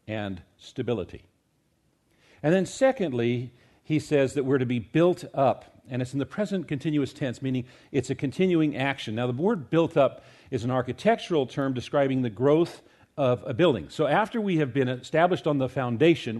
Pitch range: 130-180 Hz